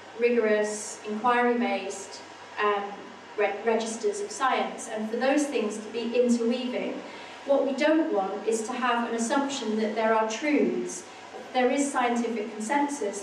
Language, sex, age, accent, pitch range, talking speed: English, female, 30-49, British, 215-255 Hz, 135 wpm